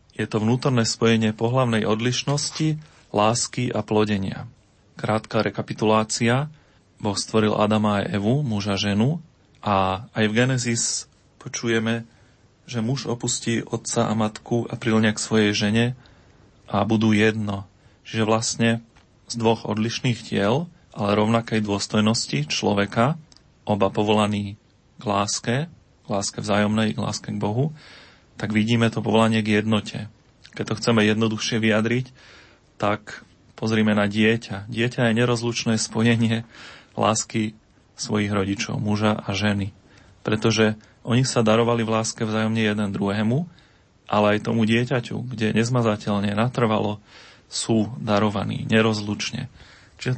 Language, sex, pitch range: Slovak, male, 105-120 Hz